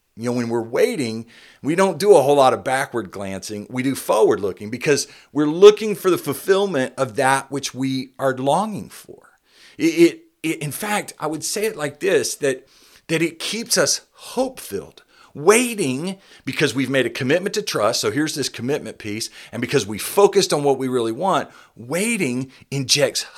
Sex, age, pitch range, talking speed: male, 40-59, 125-195 Hz, 185 wpm